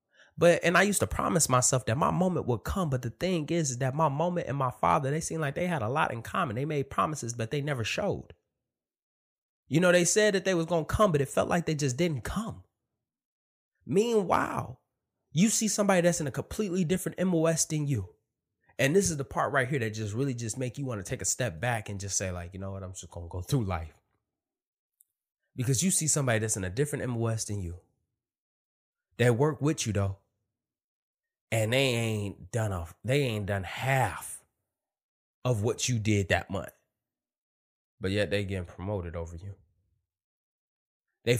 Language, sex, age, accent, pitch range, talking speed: English, male, 20-39, American, 95-140 Hz, 205 wpm